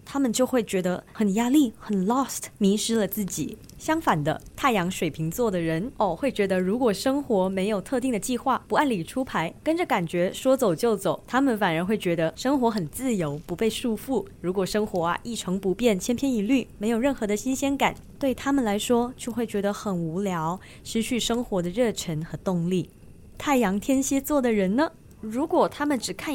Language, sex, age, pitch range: Chinese, female, 20-39, 185-250 Hz